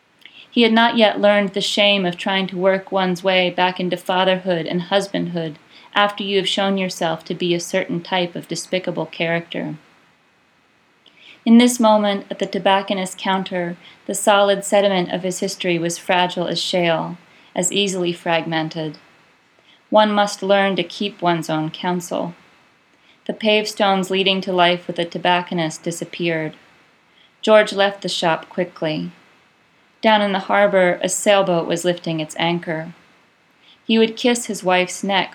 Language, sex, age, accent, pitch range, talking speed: English, female, 40-59, American, 170-200 Hz, 150 wpm